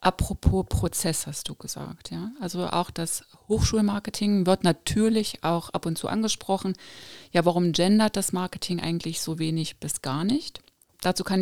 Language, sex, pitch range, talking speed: German, female, 165-195 Hz, 160 wpm